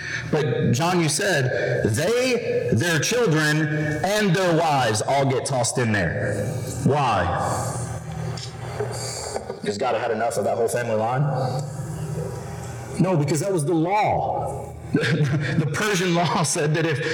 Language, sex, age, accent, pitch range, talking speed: English, male, 40-59, American, 125-165 Hz, 130 wpm